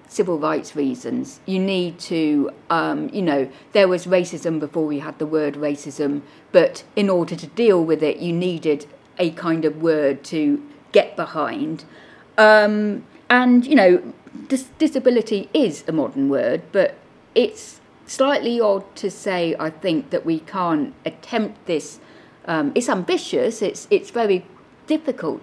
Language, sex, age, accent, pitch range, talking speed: English, female, 50-69, British, 155-255 Hz, 150 wpm